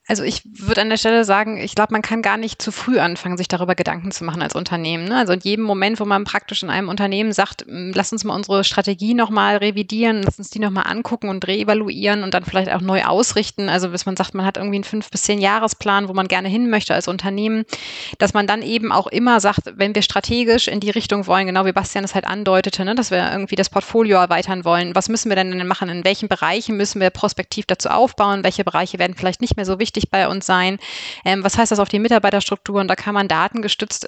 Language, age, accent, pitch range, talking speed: German, 20-39, German, 190-215 Hz, 235 wpm